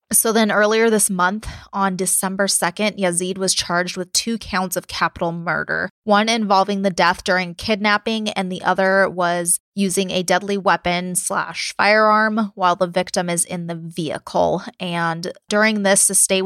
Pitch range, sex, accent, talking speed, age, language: 180-210 Hz, female, American, 165 wpm, 20-39, English